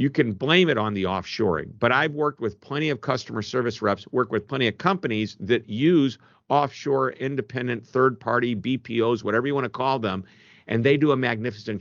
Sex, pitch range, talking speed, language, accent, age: male, 100-130 Hz, 195 wpm, English, American, 50-69